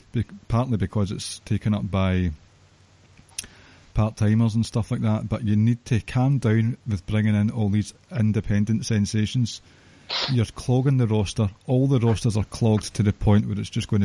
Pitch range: 100-120 Hz